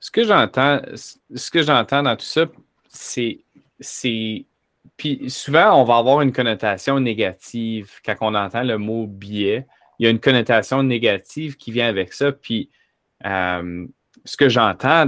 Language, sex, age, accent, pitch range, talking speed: French, male, 20-39, Canadian, 105-135 Hz, 155 wpm